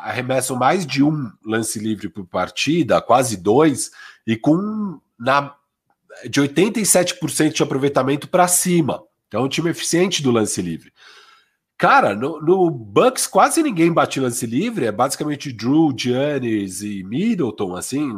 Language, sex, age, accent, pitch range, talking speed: Portuguese, male, 40-59, Brazilian, 120-185 Hz, 145 wpm